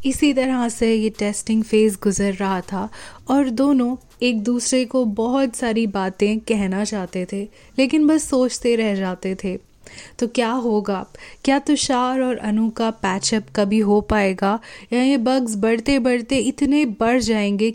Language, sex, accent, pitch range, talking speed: Hindi, female, native, 205-250 Hz, 160 wpm